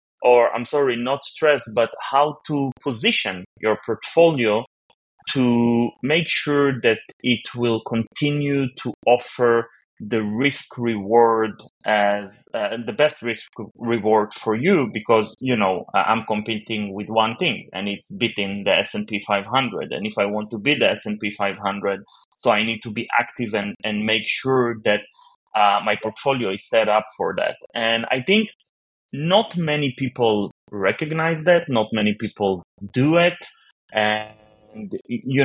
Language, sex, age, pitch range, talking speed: English, male, 30-49, 105-135 Hz, 150 wpm